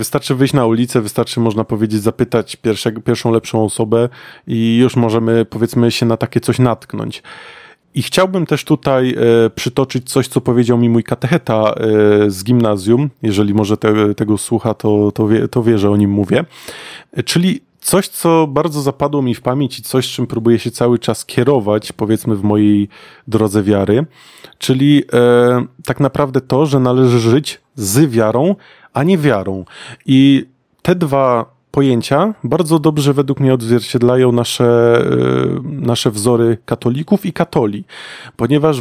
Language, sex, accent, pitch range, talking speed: Polish, male, native, 115-140 Hz, 155 wpm